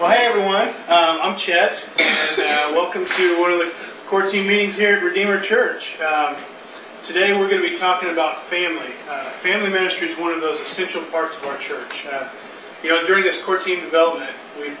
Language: English